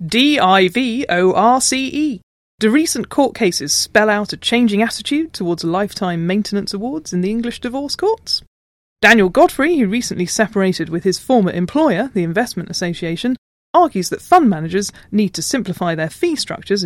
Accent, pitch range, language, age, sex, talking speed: British, 175-250 Hz, English, 30-49, female, 145 wpm